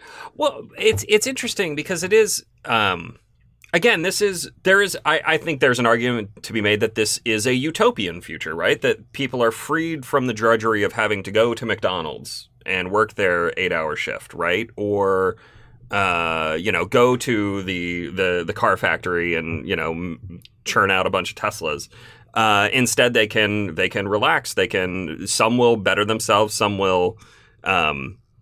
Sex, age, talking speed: male, 30-49, 175 wpm